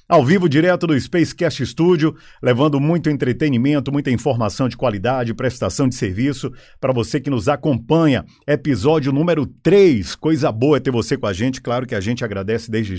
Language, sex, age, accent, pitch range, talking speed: Portuguese, male, 50-69, Brazilian, 120-165 Hz, 175 wpm